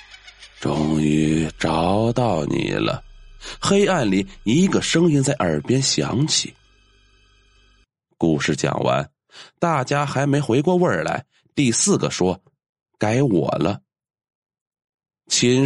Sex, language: male, Chinese